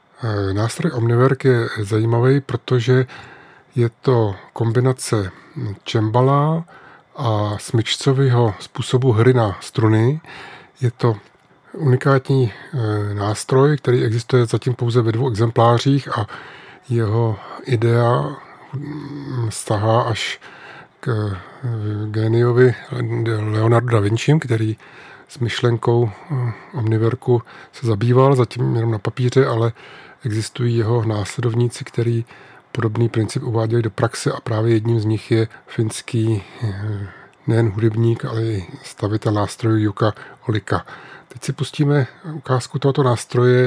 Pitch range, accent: 110-130 Hz, native